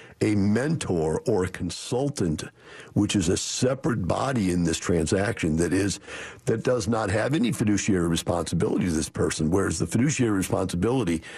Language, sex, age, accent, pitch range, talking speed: English, male, 50-69, American, 90-115 Hz, 155 wpm